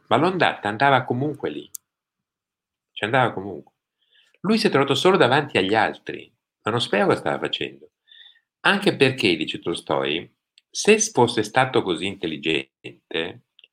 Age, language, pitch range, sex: 50-69, Italian, 120-190 Hz, male